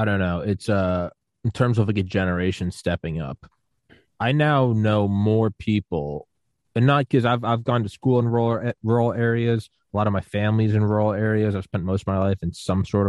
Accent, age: American, 20-39